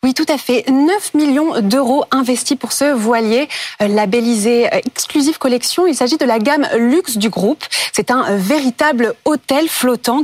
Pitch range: 225-295 Hz